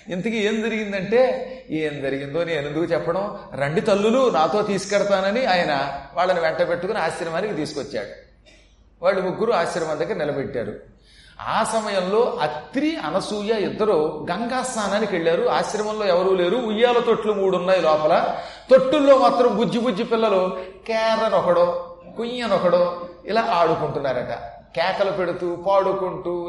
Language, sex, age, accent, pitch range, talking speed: Telugu, male, 30-49, native, 185-240 Hz, 120 wpm